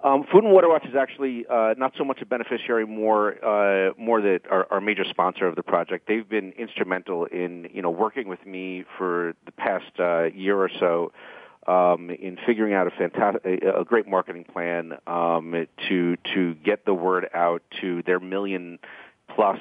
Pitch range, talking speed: 90-115 Hz, 185 wpm